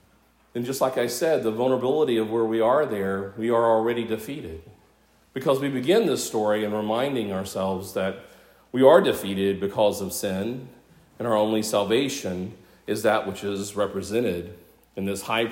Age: 40-59